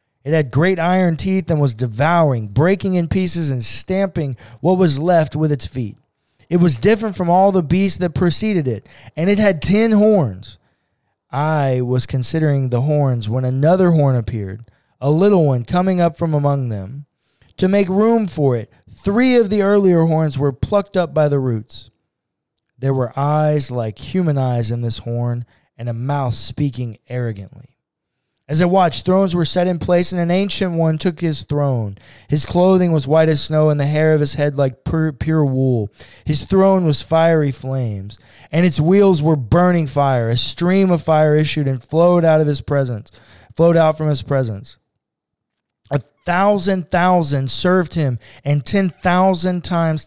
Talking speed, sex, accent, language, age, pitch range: 175 wpm, male, American, English, 20-39, 125-175 Hz